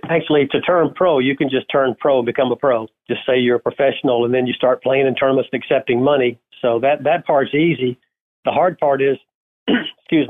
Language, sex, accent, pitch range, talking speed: English, male, American, 125-140 Hz, 220 wpm